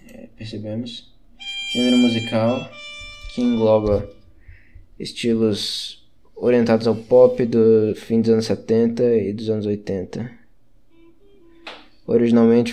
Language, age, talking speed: Portuguese, 20-39, 90 wpm